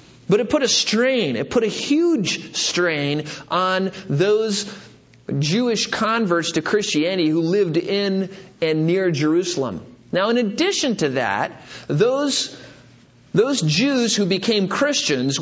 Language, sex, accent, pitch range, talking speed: English, male, American, 170-250 Hz, 130 wpm